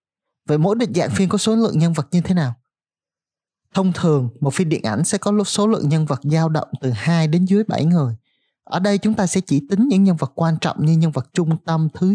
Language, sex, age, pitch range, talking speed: Vietnamese, male, 20-39, 145-190 Hz, 255 wpm